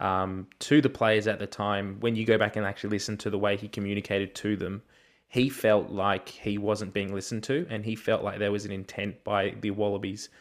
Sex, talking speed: male, 230 wpm